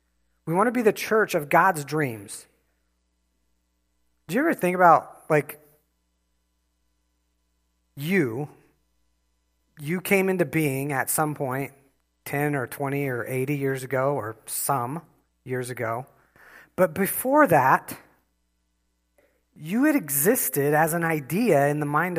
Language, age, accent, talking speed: English, 40-59, American, 125 wpm